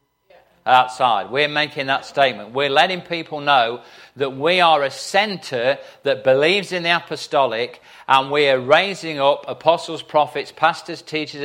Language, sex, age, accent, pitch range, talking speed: English, male, 40-59, British, 135-170 Hz, 145 wpm